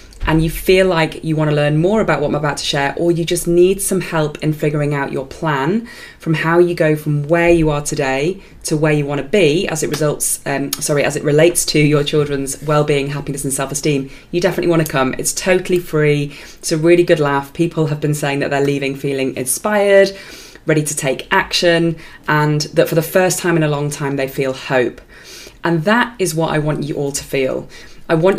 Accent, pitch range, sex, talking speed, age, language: British, 145-170 Hz, female, 230 wpm, 20-39, English